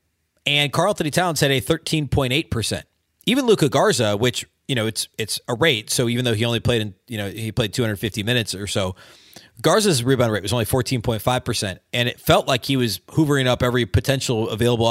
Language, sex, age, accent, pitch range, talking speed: English, male, 30-49, American, 110-155 Hz, 195 wpm